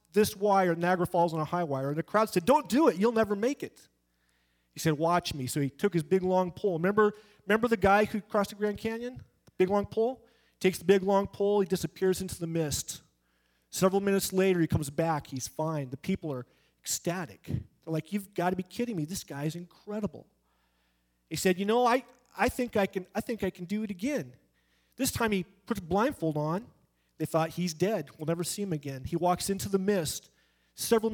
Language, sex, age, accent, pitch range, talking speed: English, male, 40-59, American, 155-230 Hz, 220 wpm